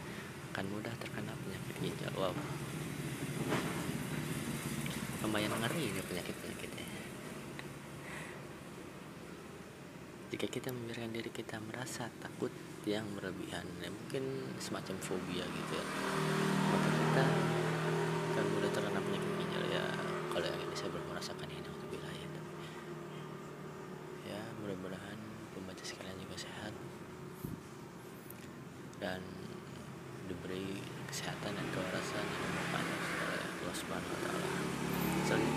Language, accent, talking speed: Indonesian, native, 90 wpm